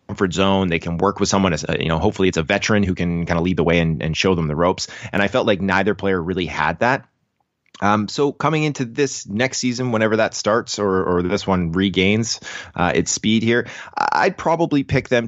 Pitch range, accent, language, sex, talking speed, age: 85-120 Hz, American, English, male, 235 wpm, 30-49